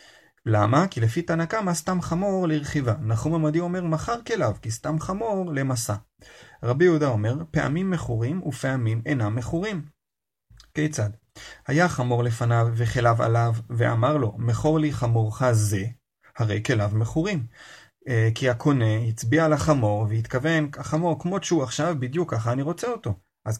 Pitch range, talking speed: 115-160 Hz, 140 wpm